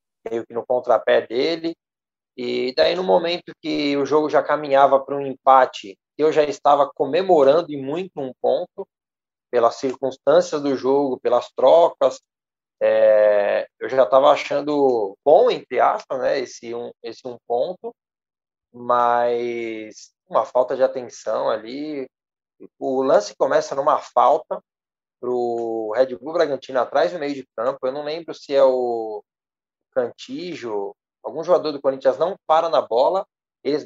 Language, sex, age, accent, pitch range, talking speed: Portuguese, male, 20-39, Brazilian, 125-175 Hz, 140 wpm